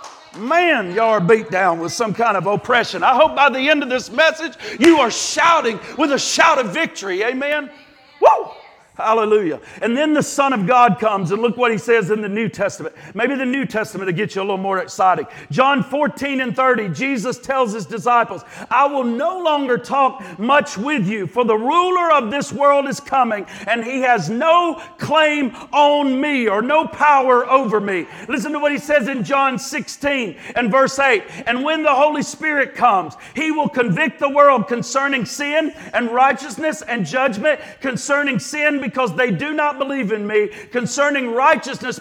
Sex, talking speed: male, 185 wpm